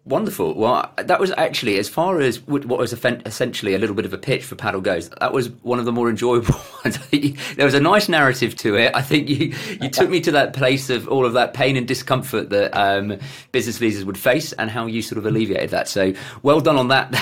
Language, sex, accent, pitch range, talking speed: English, male, British, 100-130 Hz, 240 wpm